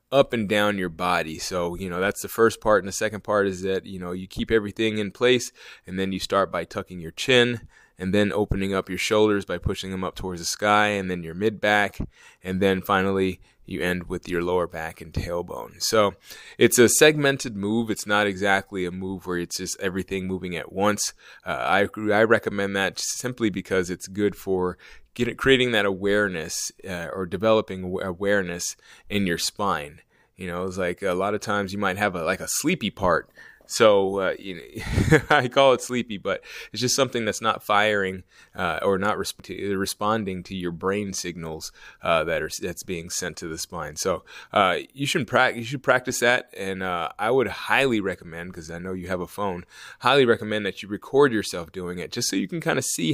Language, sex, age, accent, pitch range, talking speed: English, male, 20-39, American, 90-110 Hz, 210 wpm